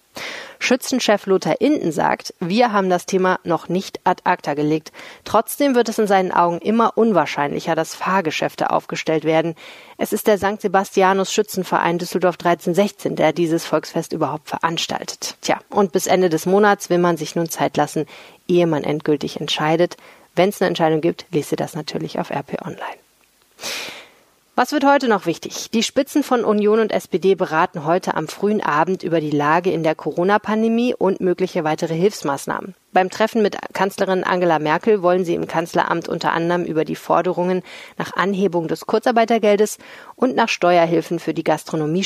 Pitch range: 165-210 Hz